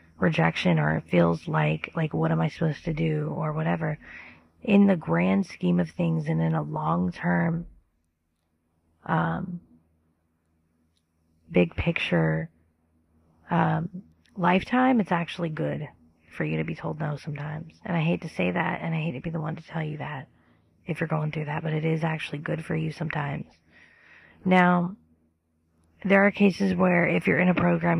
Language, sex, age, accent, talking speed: English, female, 30-49, American, 165 wpm